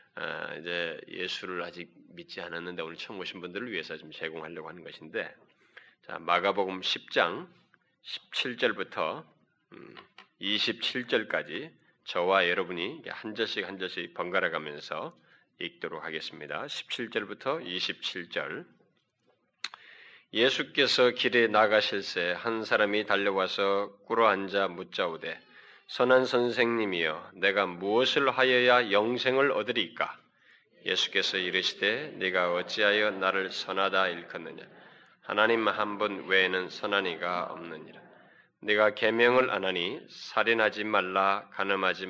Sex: male